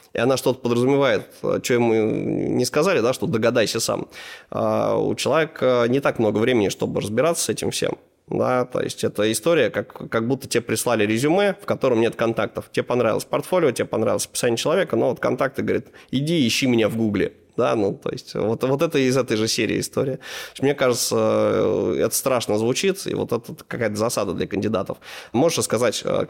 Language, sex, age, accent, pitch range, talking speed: Russian, male, 20-39, native, 110-130 Hz, 180 wpm